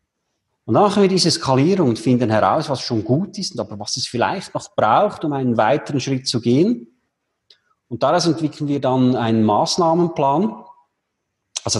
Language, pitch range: German, 115-150 Hz